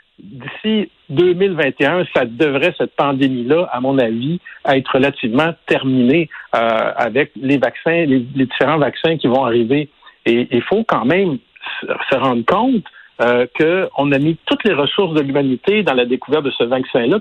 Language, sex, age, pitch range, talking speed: French, male, 60-79, 130-185 Hz, 160 wpm